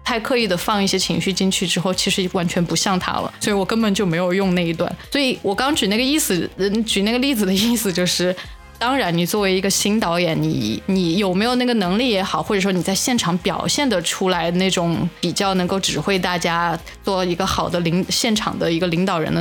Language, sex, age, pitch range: Chinese, female, 20-39, 180-225 Hz